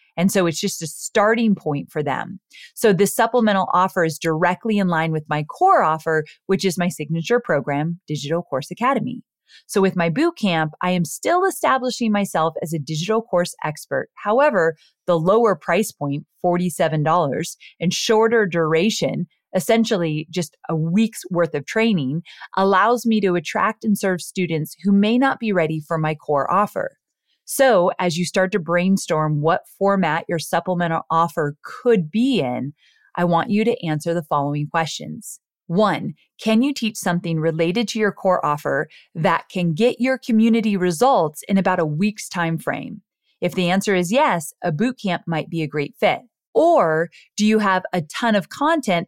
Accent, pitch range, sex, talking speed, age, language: American, 160-215 Hz, female, 170 wpm, 30-49, English